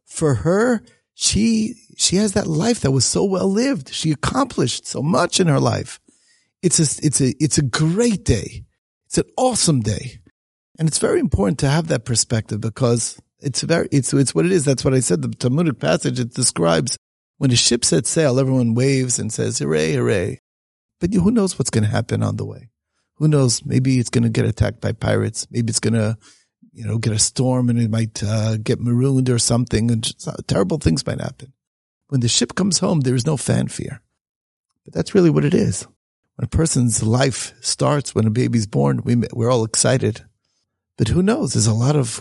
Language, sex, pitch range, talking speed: English, male, 115-145 Hz, 205 wpm